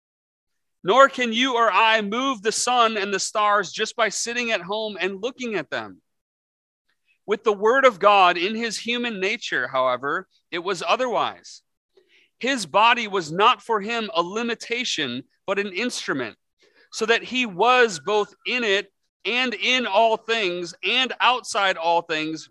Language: English